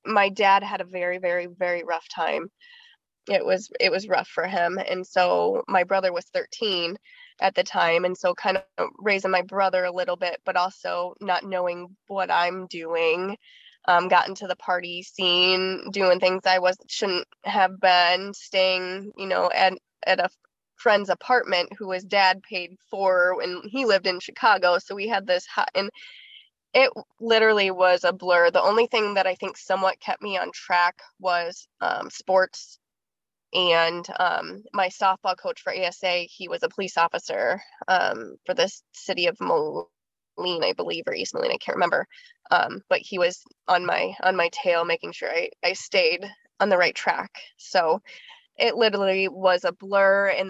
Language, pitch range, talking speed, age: English, 180-215 Hz, 175 wpm, 20-39